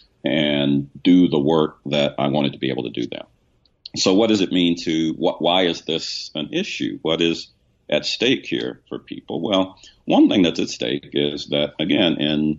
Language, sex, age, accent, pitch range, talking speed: English, male, 50-69, American, 70-80 Hz, 200 wpm